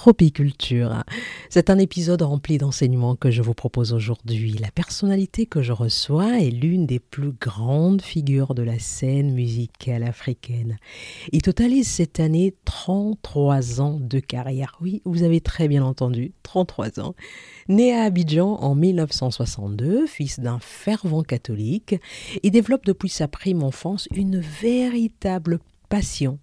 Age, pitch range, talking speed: 50-69, 125-180 Hz, 140 wpm